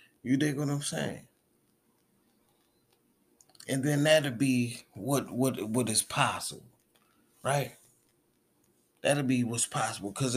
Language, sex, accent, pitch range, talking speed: English, male, American, 115-135 Hz, 115 wpm